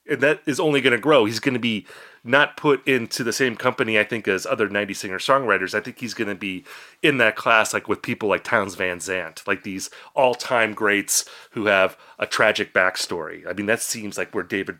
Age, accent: 30-49, American